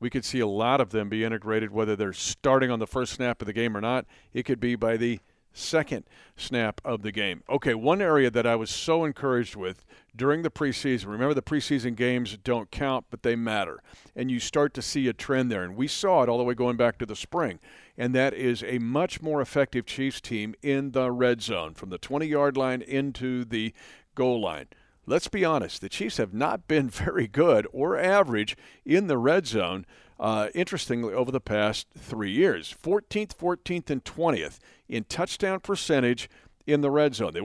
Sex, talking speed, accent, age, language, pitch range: male, 205 wpm, American, 50-69, English, 115-140 Hz